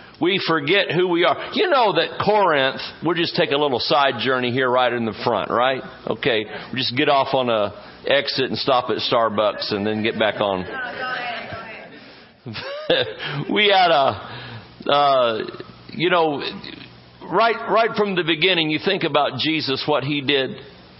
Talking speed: 165 wpm